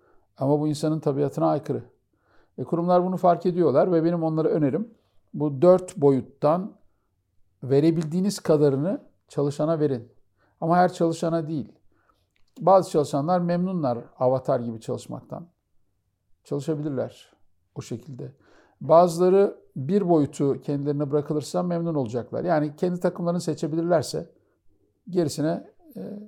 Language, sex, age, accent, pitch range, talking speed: Turkish, male, 50-69, native, 135-175 Hz, 105 wpm